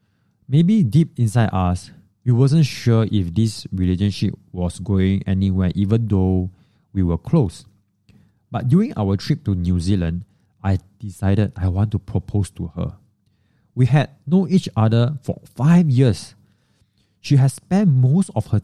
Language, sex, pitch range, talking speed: English, male, 95-120 Hz, 150 wpm